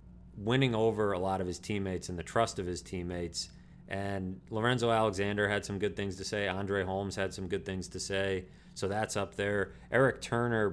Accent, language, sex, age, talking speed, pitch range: American, English, male, 30-49, 200 wpm, 95-110 Hz